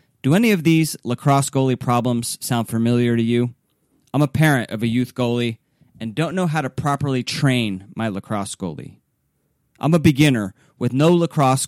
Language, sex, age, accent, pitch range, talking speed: English, male, 30-49, American, 115-150 Hz, 175 wpm